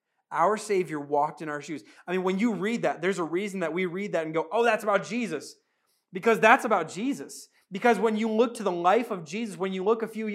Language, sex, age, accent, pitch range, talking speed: English, male, 30-49, American, 180-220 Hz, 250 wpm